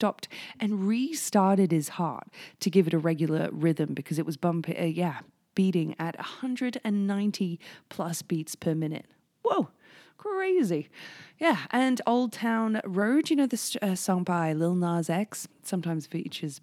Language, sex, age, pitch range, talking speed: English, female, 20-39, 160-210 Hz, 150 wpm